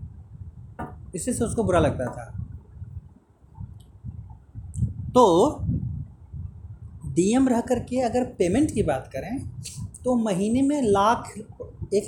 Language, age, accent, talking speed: Hindi, 30-49, native, 95 wpm